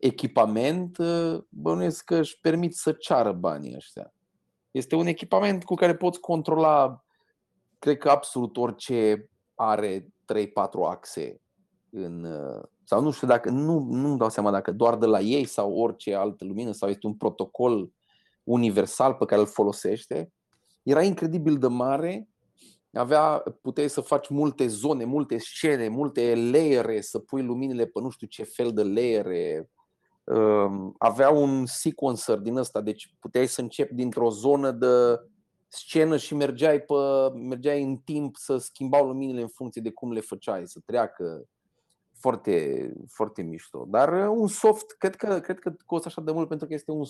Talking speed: 155 wpm